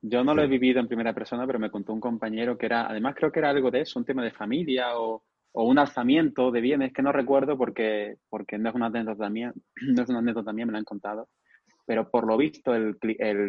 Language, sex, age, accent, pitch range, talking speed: Spanish, male, 20-39, Spanish, 105-125 Hz, 230 wpm